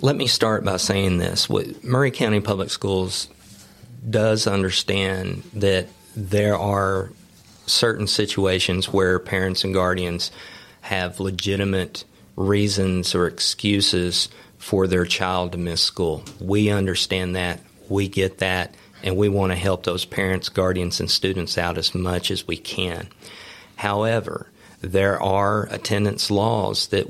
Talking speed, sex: 135 wpm, male